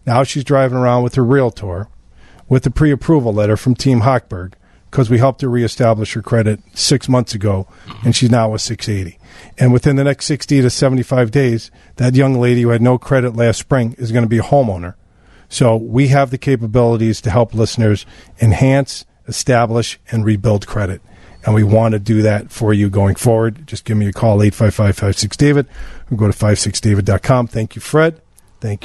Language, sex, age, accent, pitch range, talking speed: English, male, 40-59, American, 105-130 Hz, 185 wpm